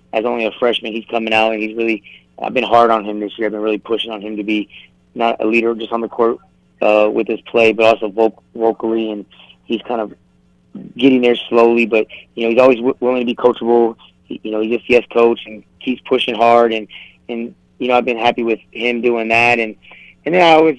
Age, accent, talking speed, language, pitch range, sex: 20-39, American, 245 wpm, English, 110-120 Hz, male